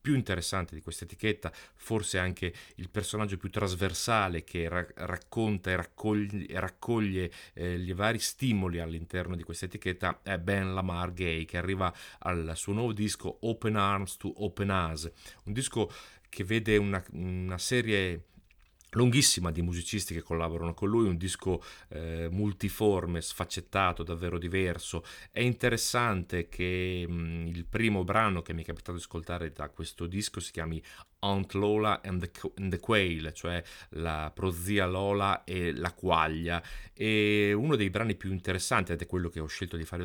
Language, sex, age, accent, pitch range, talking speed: Italian, male, 30-49, native, 85-105 Hz, 160 wpm